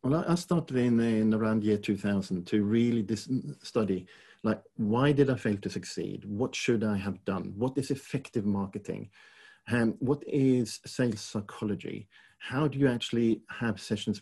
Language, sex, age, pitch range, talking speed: English, male, 40-59, 100-115 Hz, 170 wpm